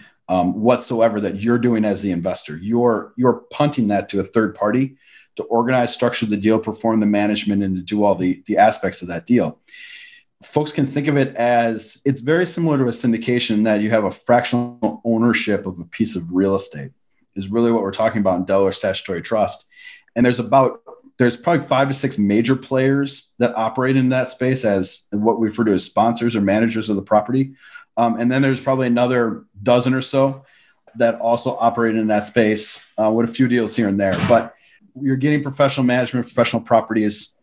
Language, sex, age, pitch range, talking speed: English, male, 30-49, 110-130 Hz, 200 wpm